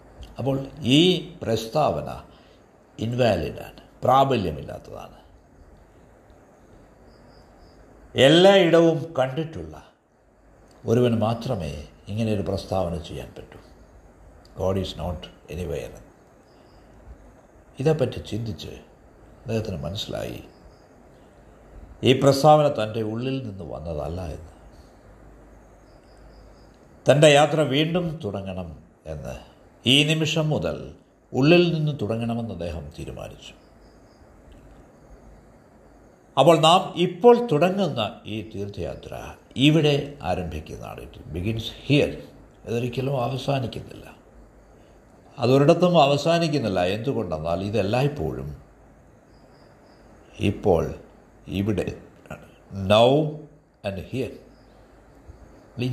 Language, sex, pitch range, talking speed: Malayalam, male, 90-145 Hz, 70 wpm